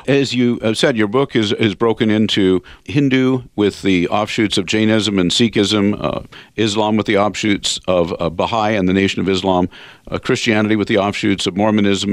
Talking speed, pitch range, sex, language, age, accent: 190 wpm, 95-115 Hz, male, English, 50-69, American